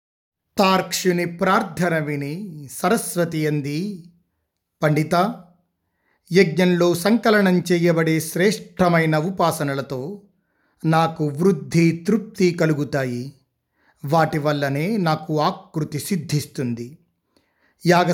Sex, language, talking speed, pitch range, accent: male, Telugu, 70 wpm, 150-185 Hz, native